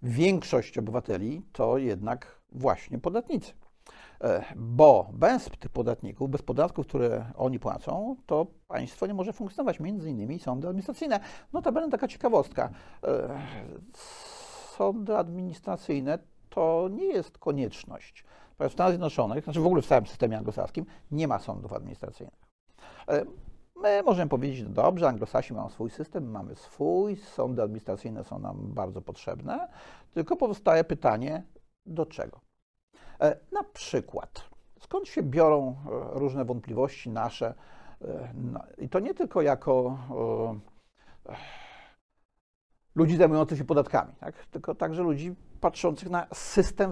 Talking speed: 130 wpm